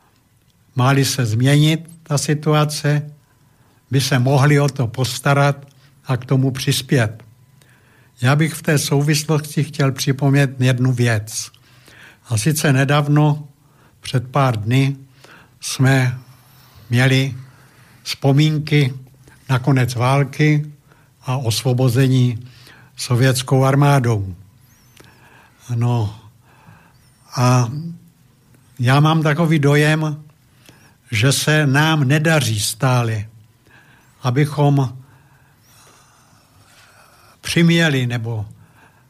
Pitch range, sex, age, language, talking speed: 125-150 Hz, male, 70-89, Slovak, 85 wpm